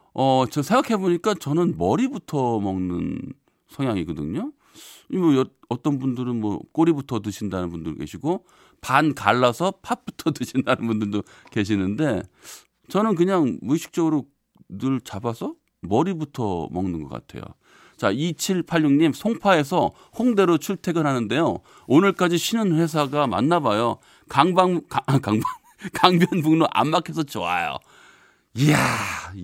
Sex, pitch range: male, 120-185 Hz